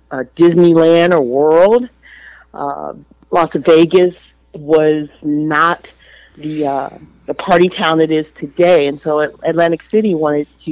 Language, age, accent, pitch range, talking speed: English, 40-59, American, 140-170 Hz, 130 wpm